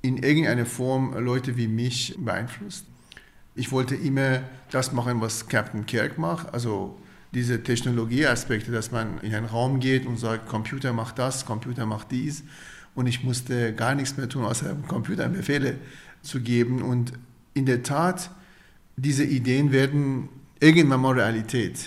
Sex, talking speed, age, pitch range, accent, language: male, 150 wpm, 40-59, 120-150 Hz, German, German